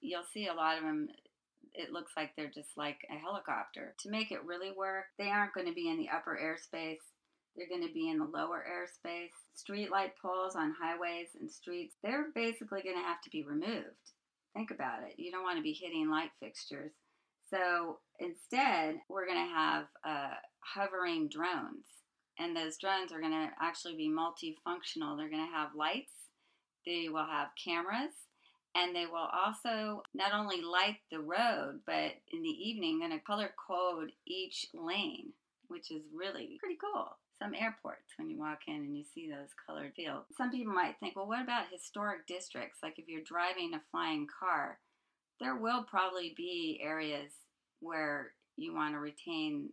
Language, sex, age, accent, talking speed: English, female, 40-59, American, 180 wpm